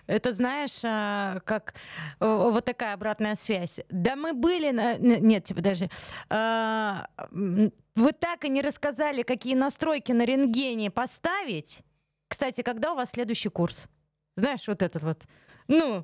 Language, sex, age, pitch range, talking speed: Russian, female, 20-39, 205-265 Hz, 130 wpm